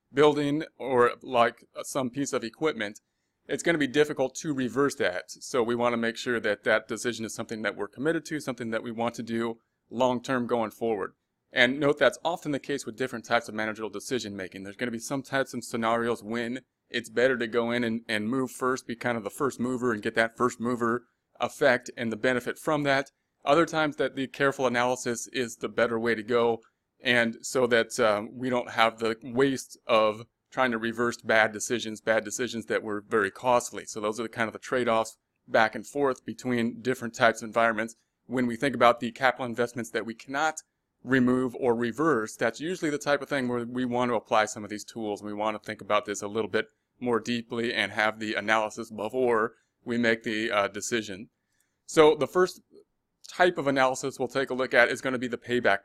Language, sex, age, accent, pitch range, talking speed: English, male, 30-49, American, 115-130 Hz, 220 wpm